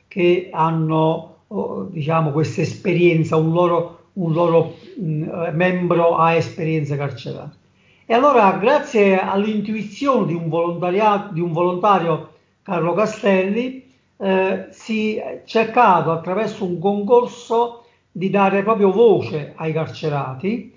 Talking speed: 110 wpm